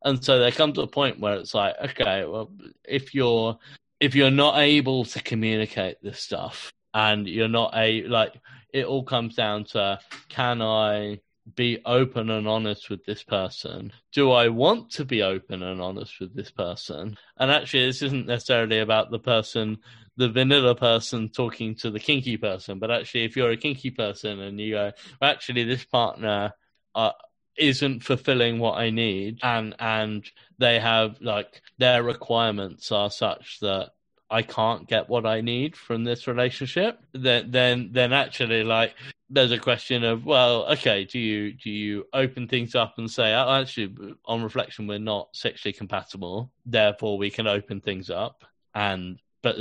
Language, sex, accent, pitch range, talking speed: English, male, British, 105-125 Hz, 175 wpm